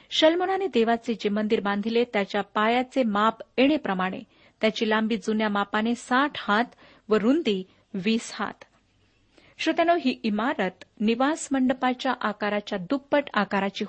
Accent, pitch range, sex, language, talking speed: native, 210-280 Hz, female, Marathi, 110 wpm